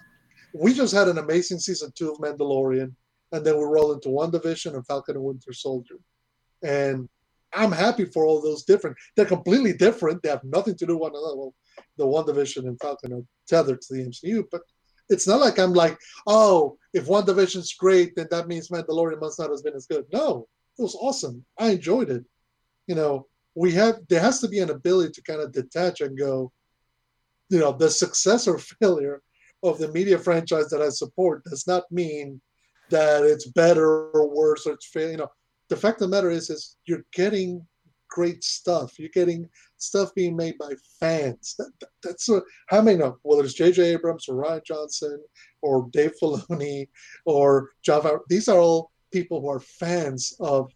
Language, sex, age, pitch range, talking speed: English, male, 30-49, 140-180 Hz, 195 wpm